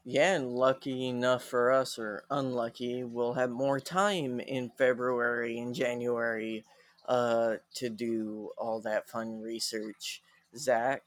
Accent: American